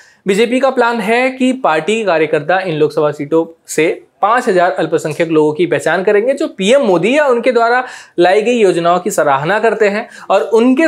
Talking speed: 175 wpm